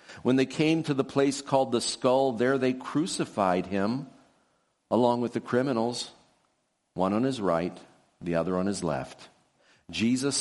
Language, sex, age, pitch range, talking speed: English, male, 50-69, 95-130 Hz, 155 wpm